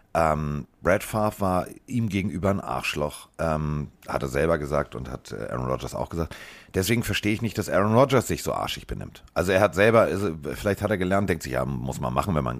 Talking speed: 220 wpm